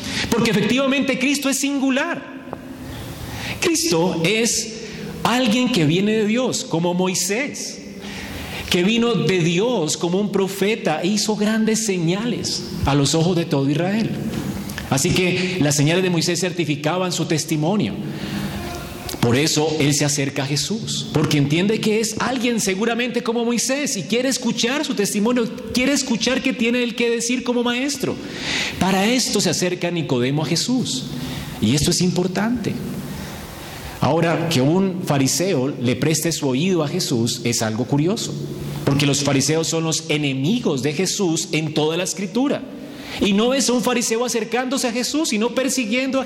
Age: 40-59